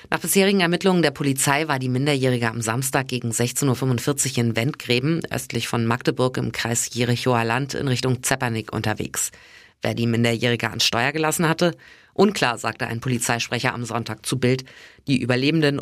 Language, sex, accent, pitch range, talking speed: German, female, German, 120-145 Hz, 165 wpm